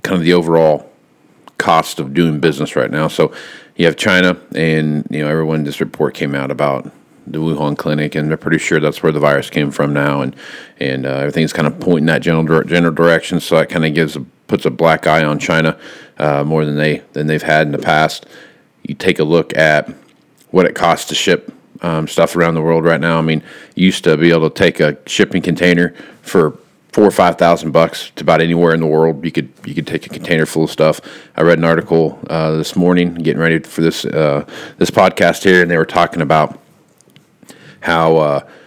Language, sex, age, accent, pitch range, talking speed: English, male, 40-59, American, 75-85 Hz, 220 wpm